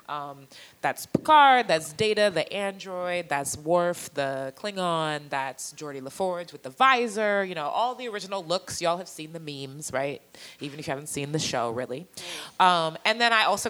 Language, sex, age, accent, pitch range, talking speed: English, female, 20-39, American, 140-190 Hz, 185 wpm